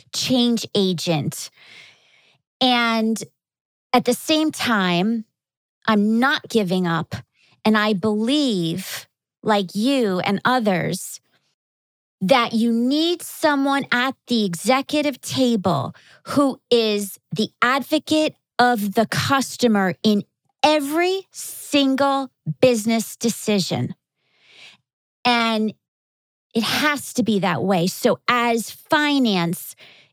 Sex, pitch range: female, 190-265 Hz